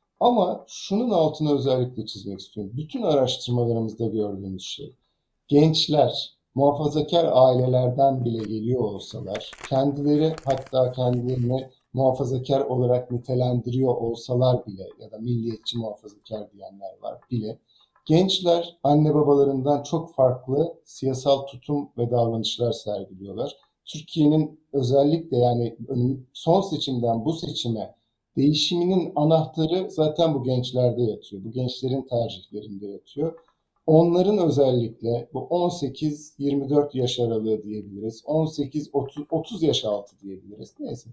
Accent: native